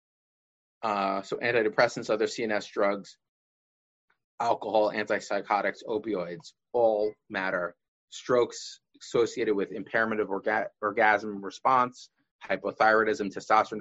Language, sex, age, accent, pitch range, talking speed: English, male, 30-49, American, 100-125 Hz, 90 wpm